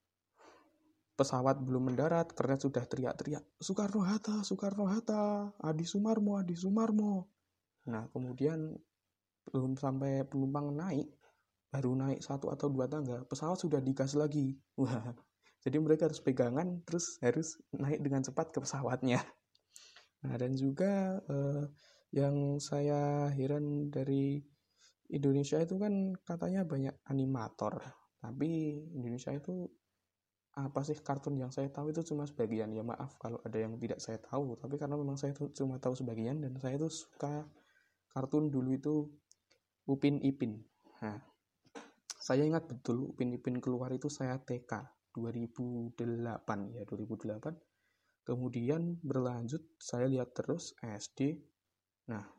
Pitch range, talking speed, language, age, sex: 125-160 Hz, 125 wpm, Indonesian, 20-39, male